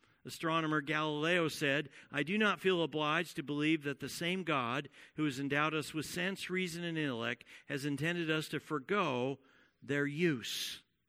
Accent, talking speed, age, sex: American, 160 wpm, 50-69, male